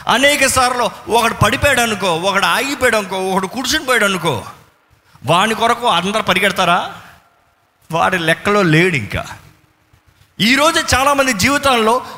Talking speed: 100 wpm